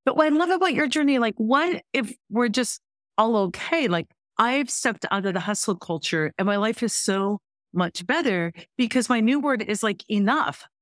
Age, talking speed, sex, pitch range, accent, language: 50-69, 200 wpm, female, 175-225 Hz, American, English